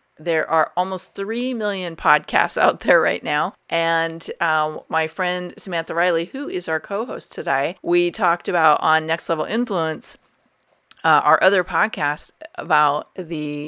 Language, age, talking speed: English, 40-59, 155 wpm